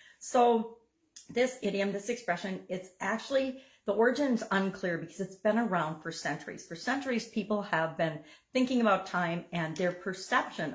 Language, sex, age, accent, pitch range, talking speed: English, female, 50-69, American, 160-215 Hz, 150 wpm